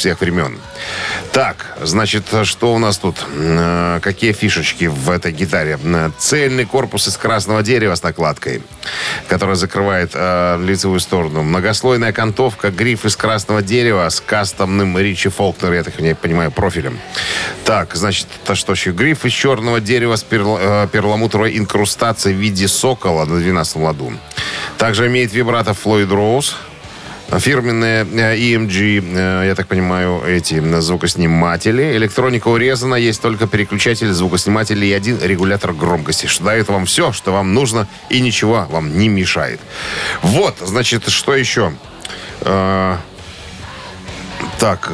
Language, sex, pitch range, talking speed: Russian, male, 90-110 Hz, 130 wpm